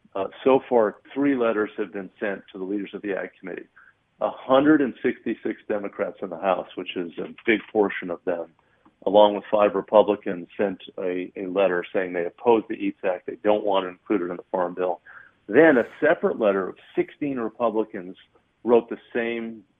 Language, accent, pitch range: English, American, 100-115 Hz